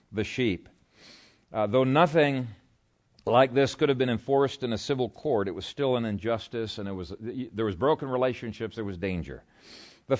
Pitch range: 105-135 Hz